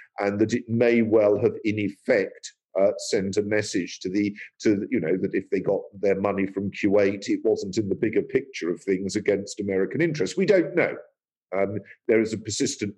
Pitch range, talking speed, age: 110-160 Hz, 205 wpm, 50-69